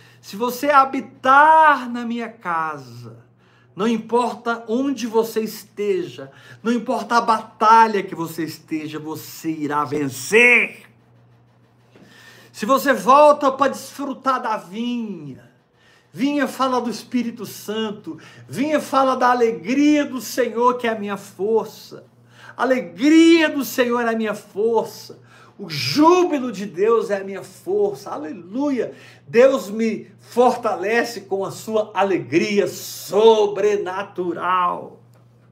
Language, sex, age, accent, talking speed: Portuguese, male, 50-69, Brazilian, 115 wpm